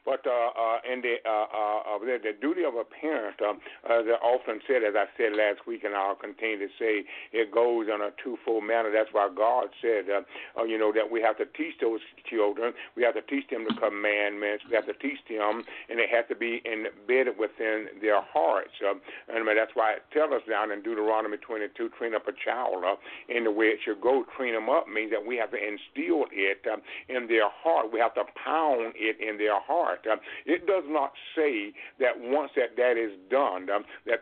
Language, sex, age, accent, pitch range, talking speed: English, male, 50-69, American, 115-135 Hz, 220 wpm